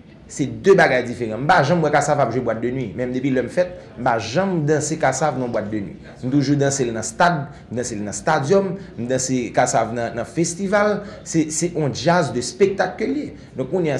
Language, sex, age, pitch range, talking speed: English, male, 30-49, 125-175 Hz, 205 wpm